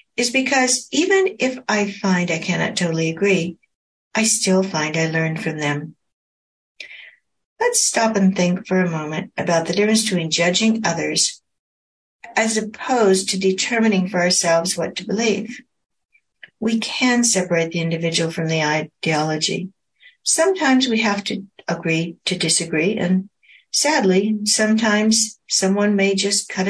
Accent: American